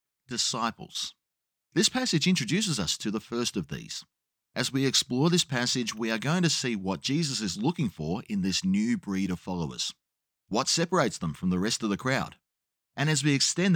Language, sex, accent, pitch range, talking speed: English, male, Australian, 120-175 Hz, 190 wpm